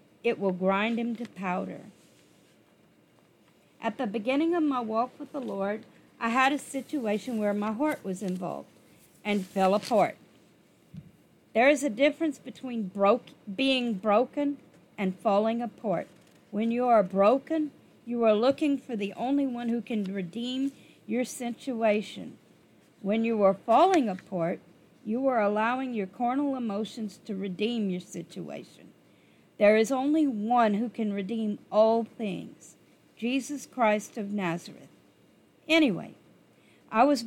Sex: female